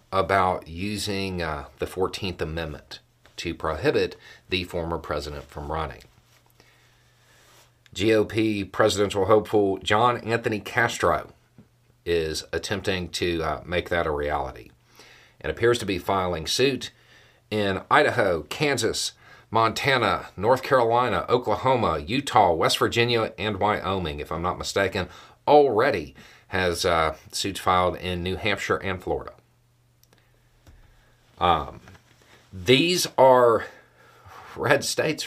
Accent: American